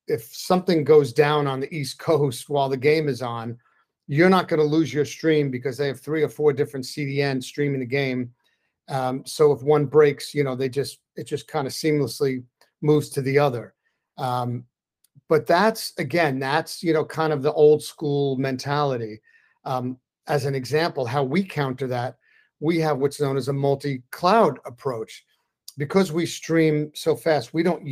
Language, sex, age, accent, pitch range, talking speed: English, male, 40-59, American, 130-155 Hz, 185 wpm